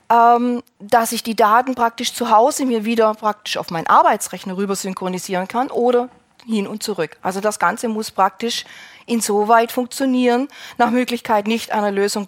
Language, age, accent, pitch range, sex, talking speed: German, 40-59, German, 175-230 Hz, female, 155 wpm